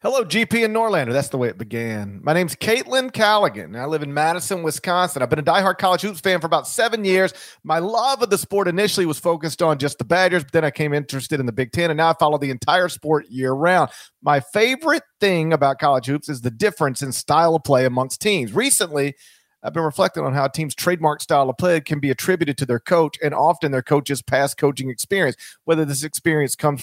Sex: male